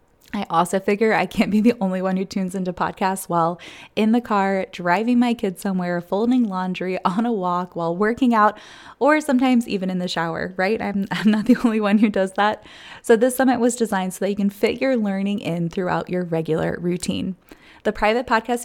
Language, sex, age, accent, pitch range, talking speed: English, female, 20-39, American, 180-225 Hz, 210 wpm